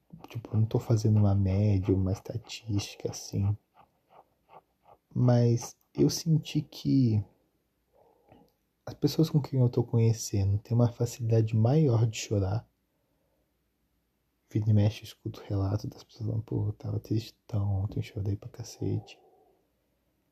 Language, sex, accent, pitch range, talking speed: Portuguese, male, Brazilian, 105-125 Hz, 135 wpm